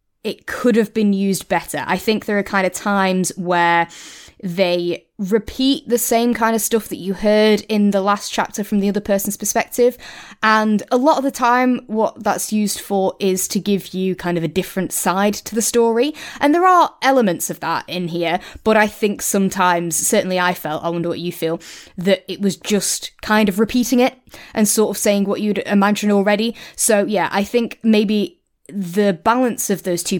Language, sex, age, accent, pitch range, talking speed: English, female, 20-39, British, 170-220 Hz, 200 wpm